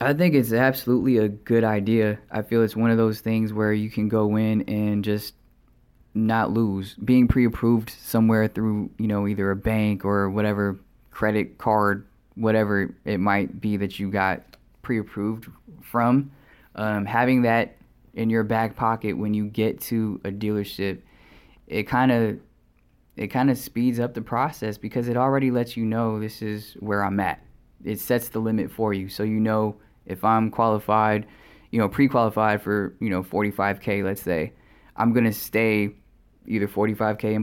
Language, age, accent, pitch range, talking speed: English, 20-39, American, 105-115 Hz, 170 wpm